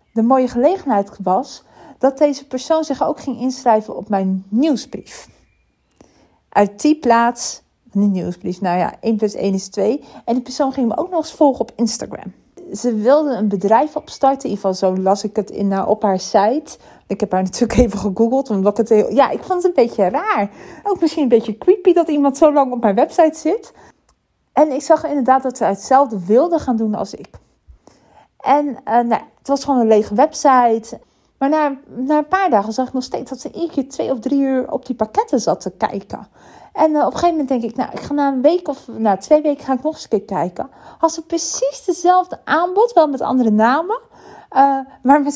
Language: Dutch